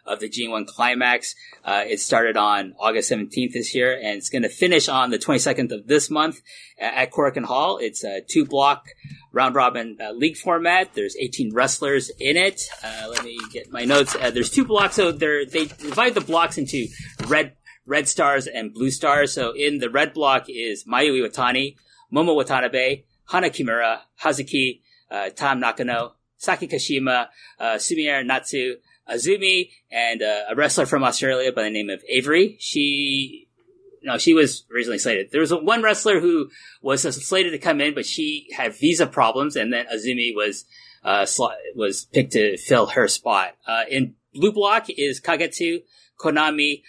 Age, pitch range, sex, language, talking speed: 30-49, 130-200 Hz, male, English, 175 wpm